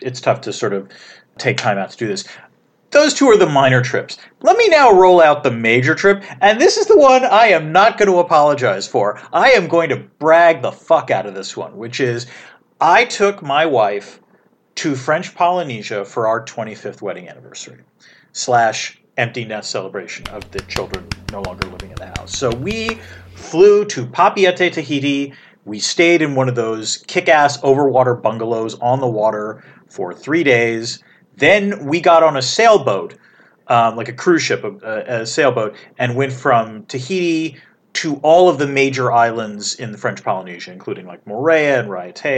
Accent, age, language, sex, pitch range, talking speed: American, 40-59, English, male, 115-160 Hz, 185 wpm